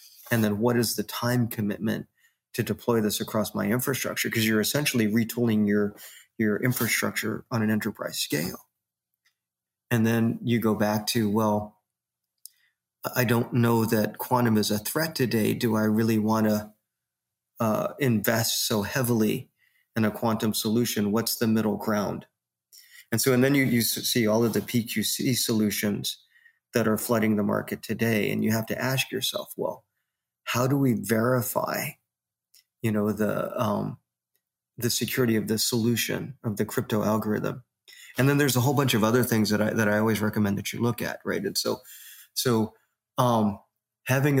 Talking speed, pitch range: 165 wpm, 105-120 Hz